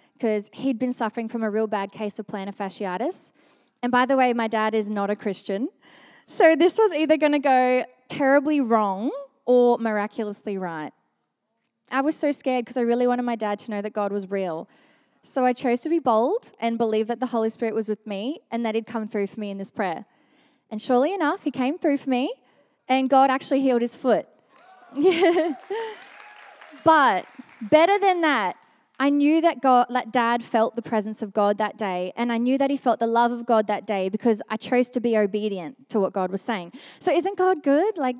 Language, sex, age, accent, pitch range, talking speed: English, female, 20-39, Australian, 225-290 Hz, 210 wpm